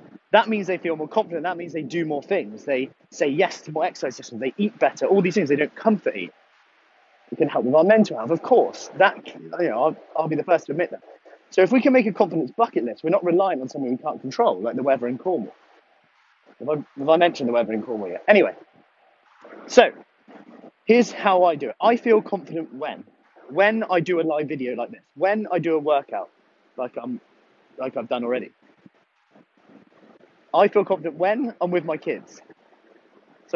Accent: British